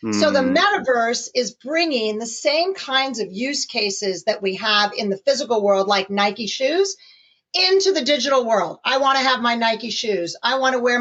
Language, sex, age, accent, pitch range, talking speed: English, female, 40-59, American, 215-285 Hz, 195 wpm